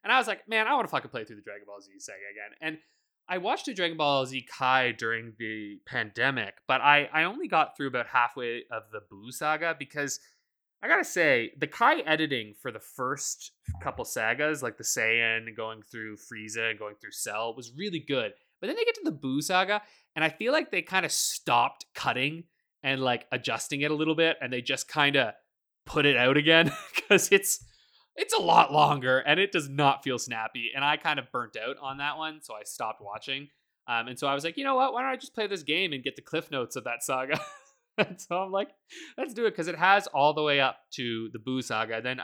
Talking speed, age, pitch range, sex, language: 235 wpm, 20-39, 115-160 Hz, male, English